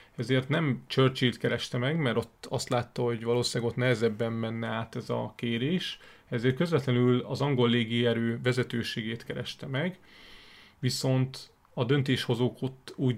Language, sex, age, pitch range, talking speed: Hungarian, male, 30-49, 115-135 Hz, 135 wpm